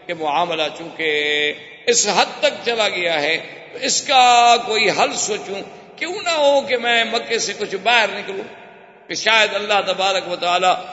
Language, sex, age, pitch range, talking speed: Urdu, male, 50-69, 160-205 Hz, 170 wpm